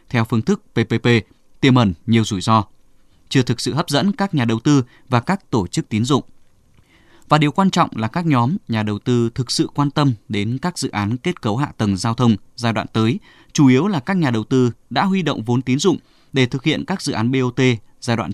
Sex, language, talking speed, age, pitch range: male, Vietnamese, 240 wpm, 20-39, 115-150 Hz